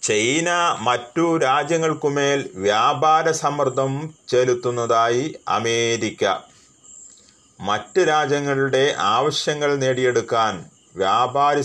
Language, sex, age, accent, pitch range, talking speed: Malayalam, male, 30-49, native, 115-145 Hz, 60 wpm